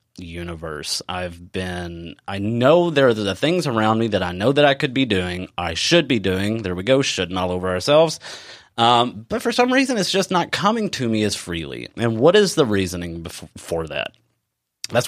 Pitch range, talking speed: 90-115 Hz, 205 wpm